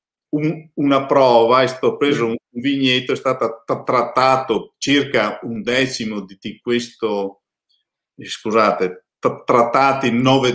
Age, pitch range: 50-69, 110-130 Hz